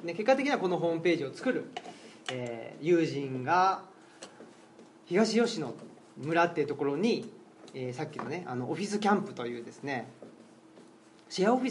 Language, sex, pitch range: Japanese, male, 135-195 Hz